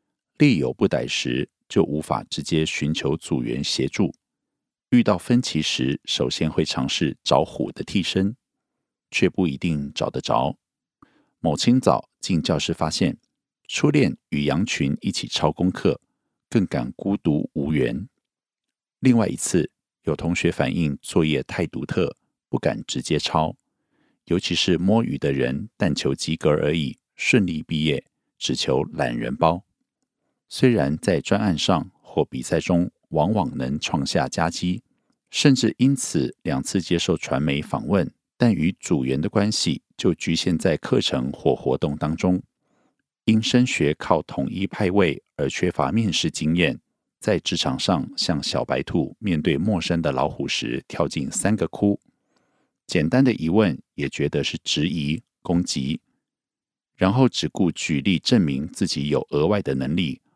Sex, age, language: male, 50-69, Korean